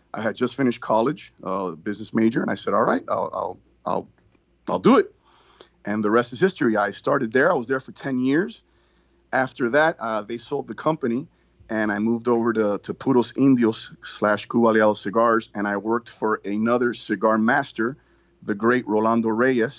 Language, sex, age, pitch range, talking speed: English, male, 30-49, 105-130 Hz, 190 wpm